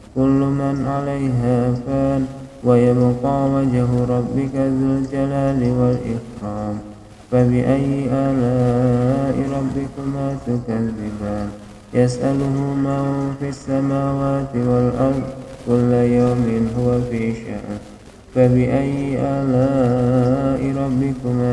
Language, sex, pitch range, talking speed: English, male, 115-135 Hz, 65 wpm